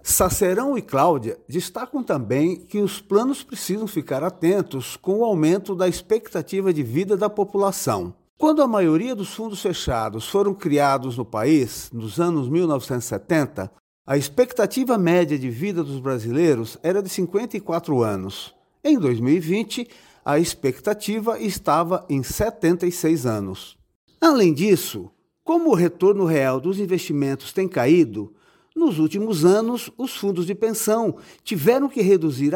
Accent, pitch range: Brazilian, 155-215 Hz